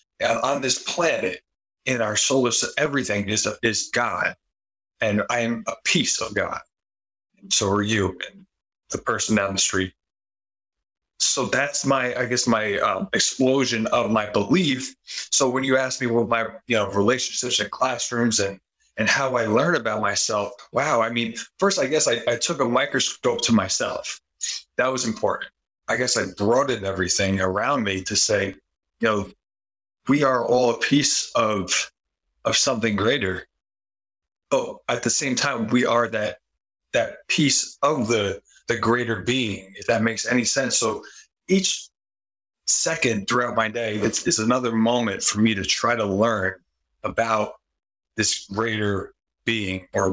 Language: English